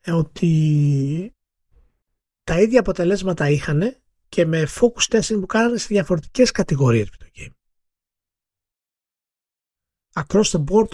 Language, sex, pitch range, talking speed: Greek, male, 130-205 Hz, 105 wpm